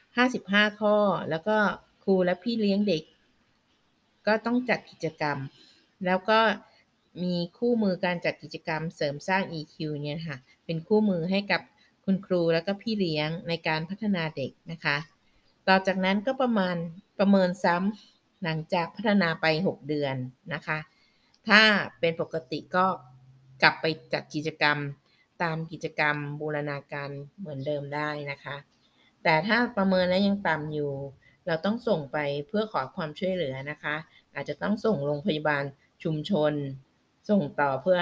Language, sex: Thai, female